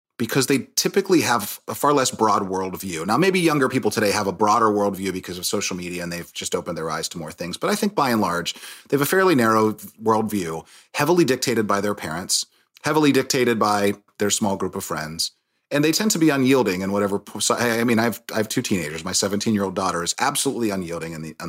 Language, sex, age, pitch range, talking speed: English, male, 30-49, 95-125 Hz, 220 wpm